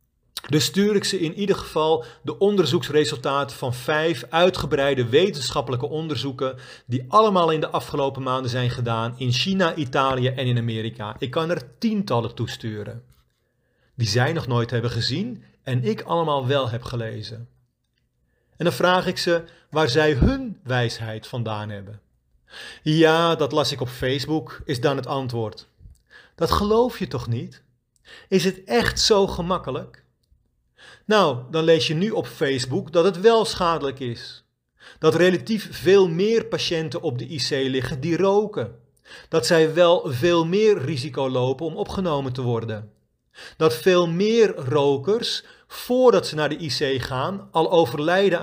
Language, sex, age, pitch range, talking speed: Dutch, male, 40-59, 125-175 Hz, 150 wpm